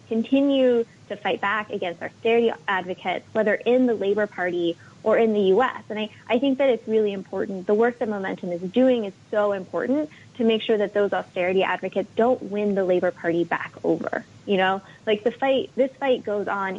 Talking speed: 205 wpm